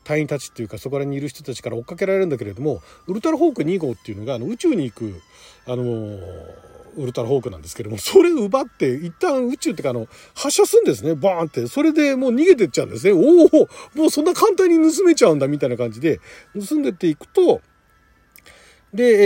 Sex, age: male, 40-59